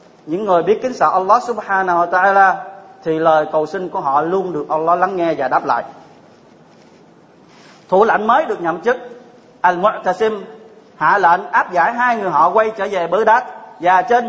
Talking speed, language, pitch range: 185 wpm, Vietnamese, 170-225 Hz